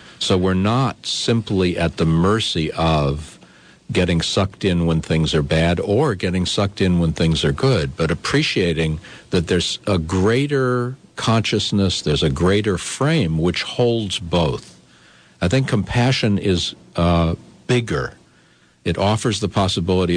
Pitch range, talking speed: 80-105 Hz, 140 wpm